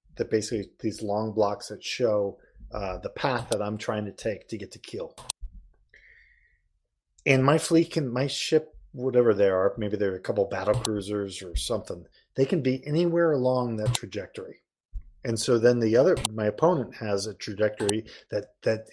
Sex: male